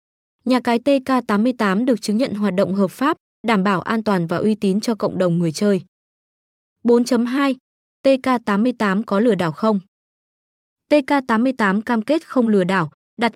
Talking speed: 155 wpm